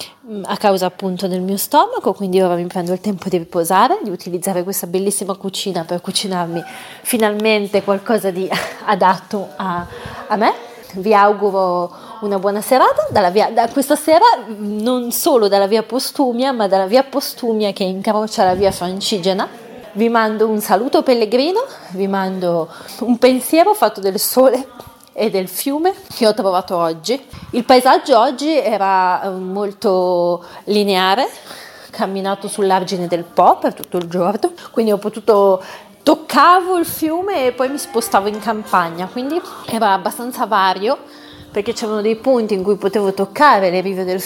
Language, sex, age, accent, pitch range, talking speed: Italian, female, 30-49, native, 190-240 Hz, 155 wpm